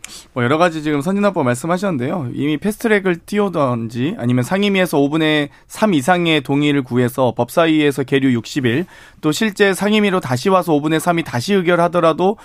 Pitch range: 140-205 Hz